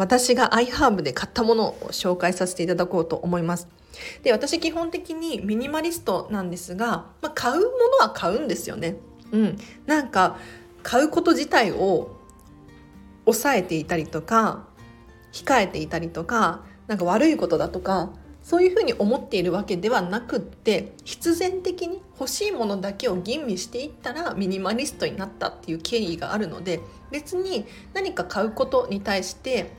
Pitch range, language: 180-275 Hz, Japanese